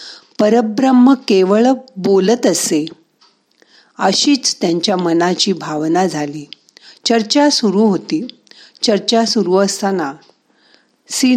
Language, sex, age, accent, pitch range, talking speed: Marathi, female, 50-69, native, 170-230 Hz, 85 wpm